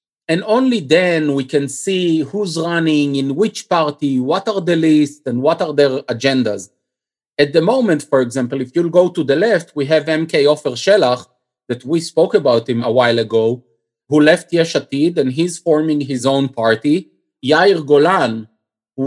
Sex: male